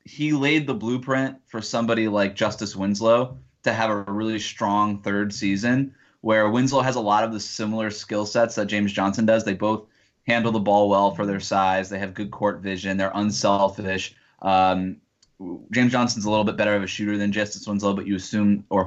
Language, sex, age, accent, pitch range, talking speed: English, male, 20-39, American, 100-115 Hz, 200 wpm